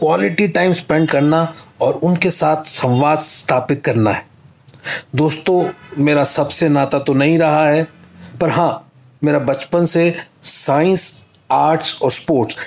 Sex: male